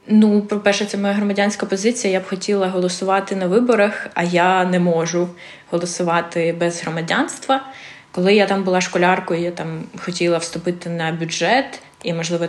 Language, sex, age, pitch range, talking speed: Ukrainian, female, 20-39, 170-195 Hz, 155 wpm